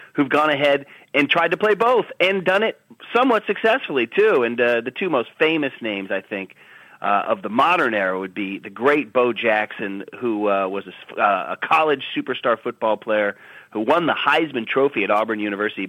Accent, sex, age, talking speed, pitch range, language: American, male, 40-59, 195 wpm, 115-165 Hz, English